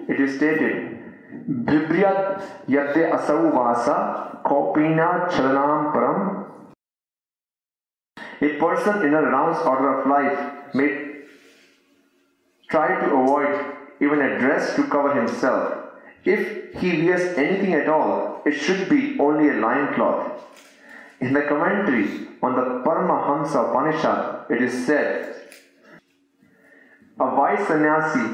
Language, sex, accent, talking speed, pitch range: English, male, Indian, 115 wpm, 140-180 Hz